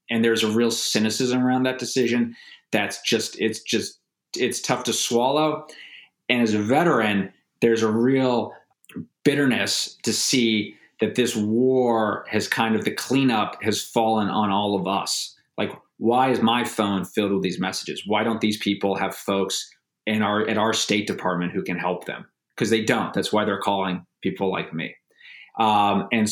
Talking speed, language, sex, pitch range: 175 wpm, English, male, 100-115 Hz